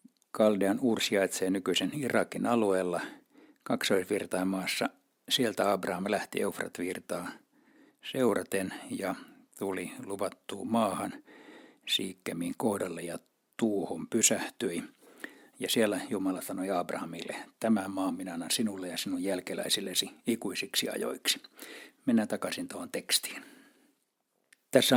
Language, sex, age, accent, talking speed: Finnish, male, 60-79, native, 100 wpm